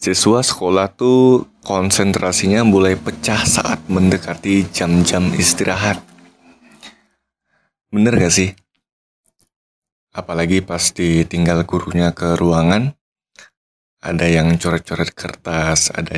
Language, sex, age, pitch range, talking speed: Indonesian, male, 20-39, 85-100 Hz, 90 wpm